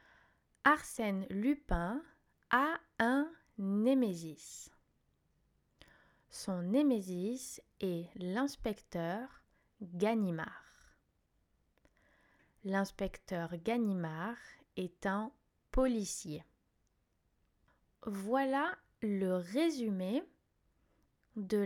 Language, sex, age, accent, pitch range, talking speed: French, female, 20-39, French, 190-265 Hz, 55 wpm